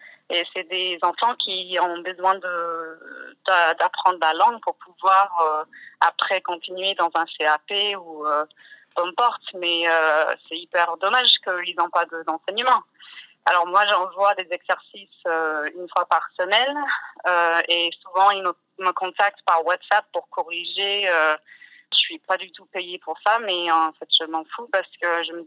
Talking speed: 165 wpm